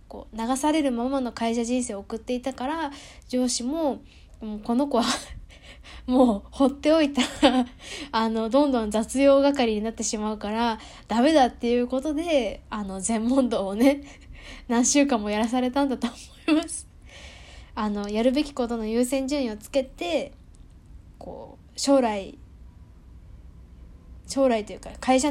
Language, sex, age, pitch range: Japanese, female, 10-29, 225-275 Hz